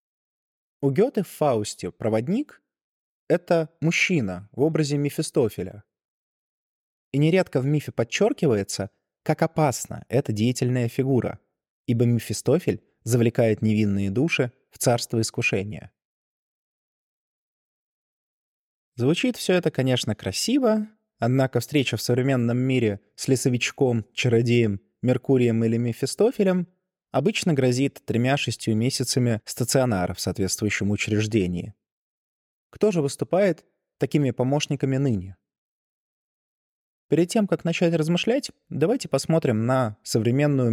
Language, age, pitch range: Russian, 20-39, 115-160 Hz